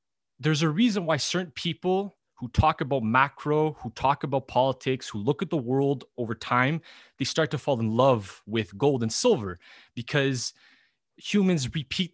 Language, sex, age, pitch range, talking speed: English, male, 20-39, 130-175 Hz, 170 wpm